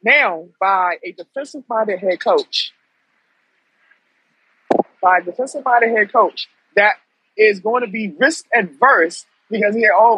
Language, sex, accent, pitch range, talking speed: English, male, American, 190-265 Hz, 120 wpm